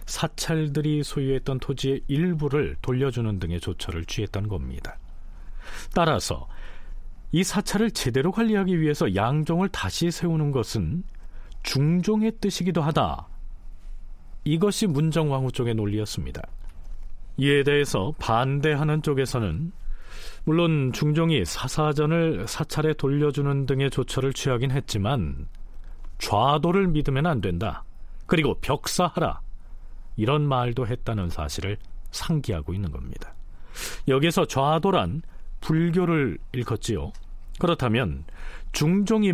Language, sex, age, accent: Korean, male, 40-59, native